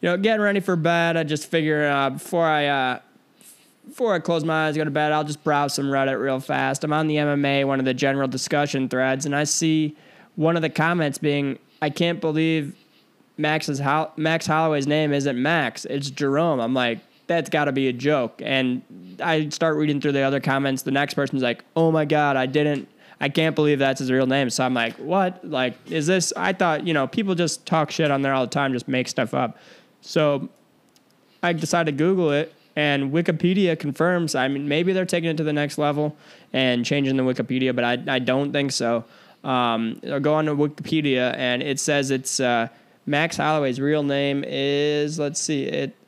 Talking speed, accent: 210 wpm, American